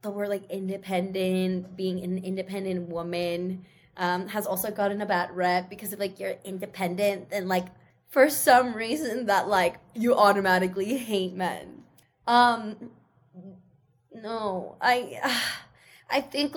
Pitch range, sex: 195-250 Hz, female